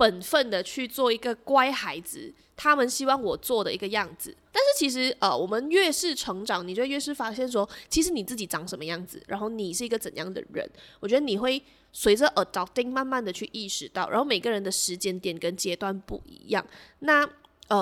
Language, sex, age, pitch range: Chinese, female, 20-39, 195-265 Hz